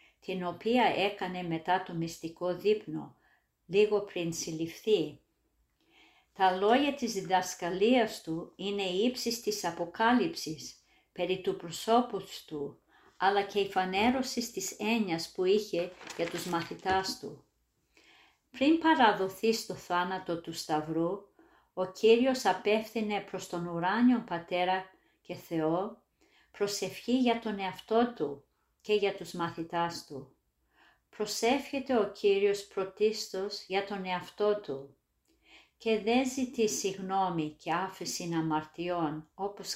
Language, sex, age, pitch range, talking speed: Greek, female, 50-69, 170-215 Hz, 115 wpm